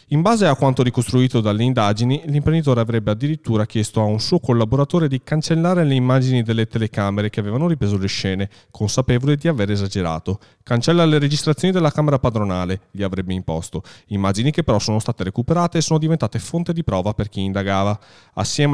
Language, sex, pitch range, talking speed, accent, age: Italian, male, 105-145 Hz, 175 wpm, native, 30-49